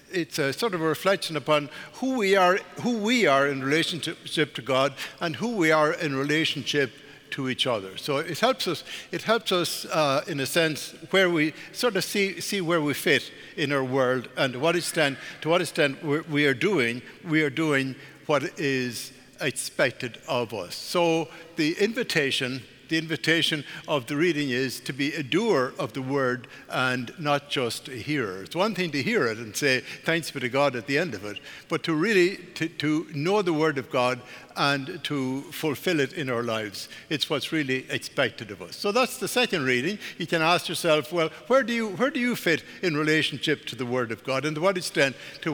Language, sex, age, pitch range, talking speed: English, male, 60-79, 135-170 Hz, 205 wpm